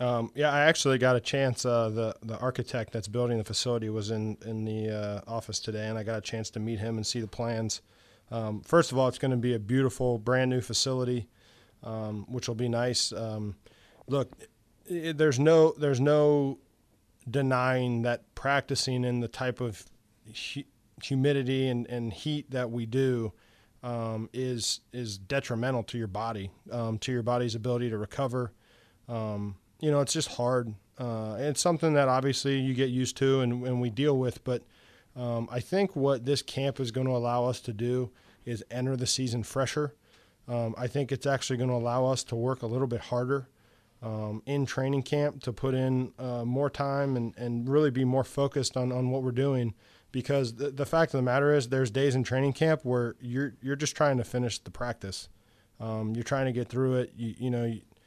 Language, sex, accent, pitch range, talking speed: English, male, American, 115-135 Hz, 200 wpm